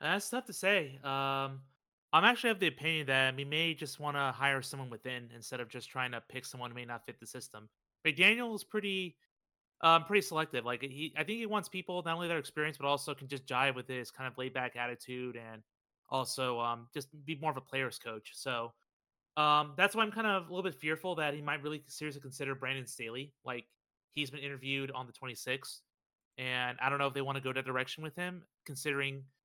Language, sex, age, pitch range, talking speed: English, male, 30-49, 130-155 Hz, 230 wpm